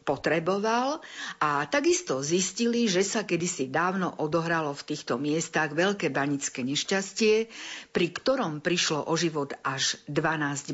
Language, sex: Slovak, female